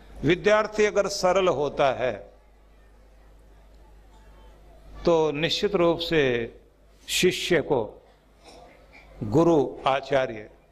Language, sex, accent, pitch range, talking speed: Hindi, male, native, 135-170 Hz, 75 wpm